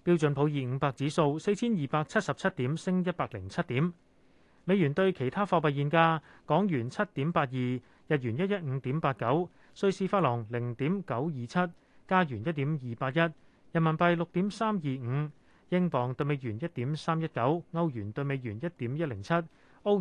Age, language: 30-49, Chinese